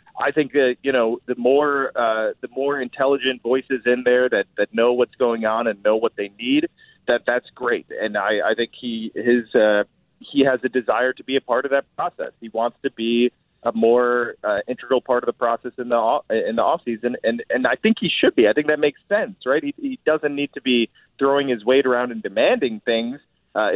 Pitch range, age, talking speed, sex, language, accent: 120-150 Hz, 30-49, 230 wpm, male, English, American